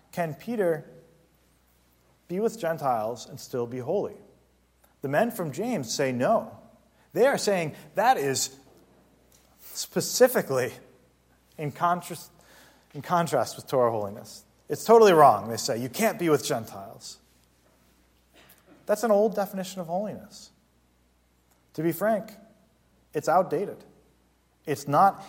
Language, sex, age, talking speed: English, male, 30-49, 120 wpm